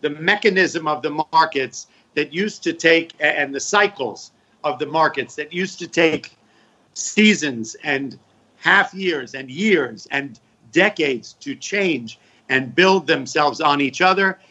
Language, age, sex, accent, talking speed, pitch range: German, 50-69, male, American, 145 wpm, 155-190 Hz